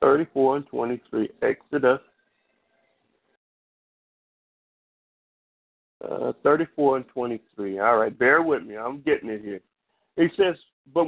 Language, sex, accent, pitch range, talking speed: English, male, American, 135-195 Hz, 110 wpm